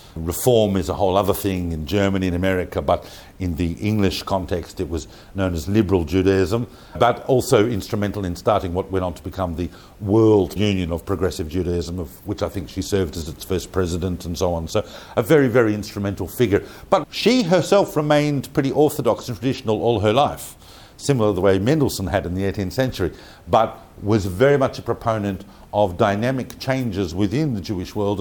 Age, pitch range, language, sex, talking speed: 50-69, 90-115 Hz, English, male, 190 wpm